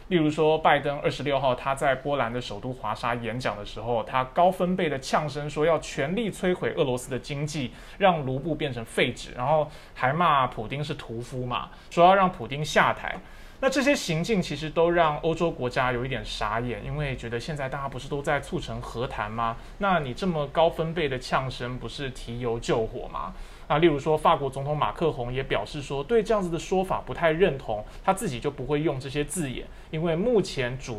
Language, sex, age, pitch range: Chinese, male, 20-39, 125-170 Hz